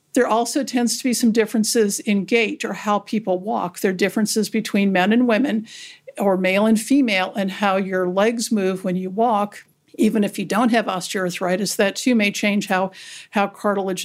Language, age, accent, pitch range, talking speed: English, 50-69, American, 195-230 Hz, 190 wpm